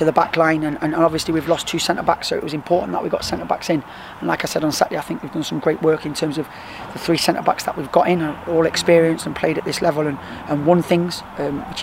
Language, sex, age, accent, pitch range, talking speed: English, male, 20-39, British, 150-170 Hz, 295 wpm